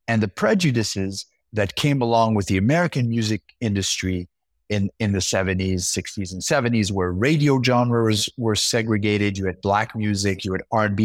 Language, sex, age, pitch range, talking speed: English, male, 30-49, 105-140 Hz, 165 wpm